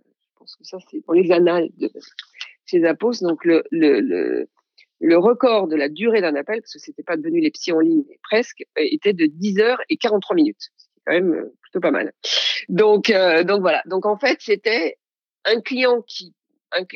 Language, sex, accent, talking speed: French, female, French, 200 wpm